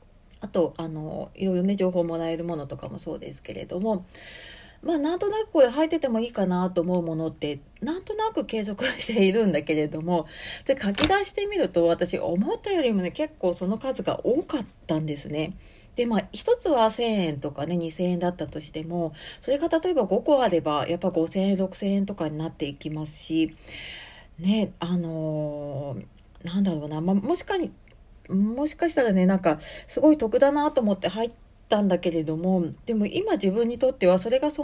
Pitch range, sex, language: 165-230 Hz, female, Japanese